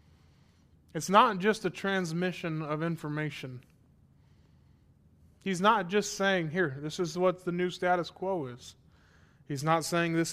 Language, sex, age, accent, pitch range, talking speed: English, male, 20-39, American, 135-175 Hz, 140 wpm